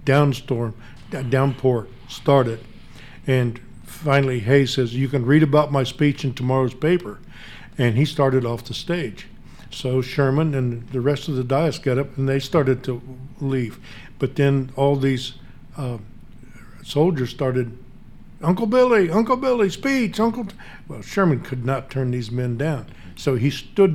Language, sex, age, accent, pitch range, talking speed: English, male, 50-69, American, 125-145 Hz, 160 wpm